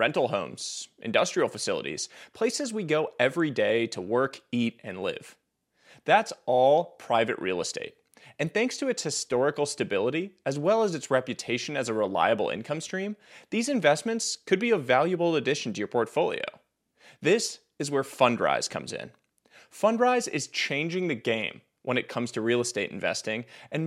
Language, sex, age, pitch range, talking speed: English, male, 30-49, 125-190 Hz, 160 wpm